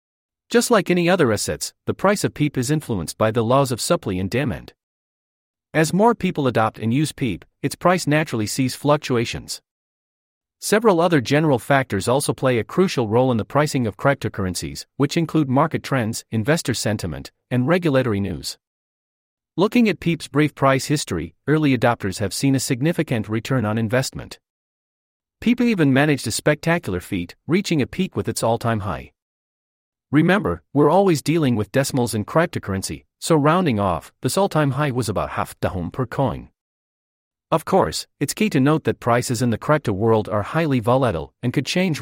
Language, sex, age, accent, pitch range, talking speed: English, male, 40-59, American, 105-150 Hz, 170 wpm